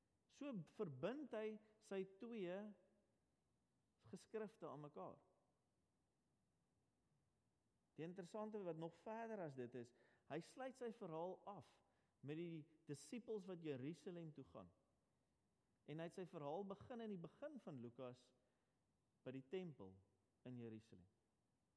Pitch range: 120-185 Hz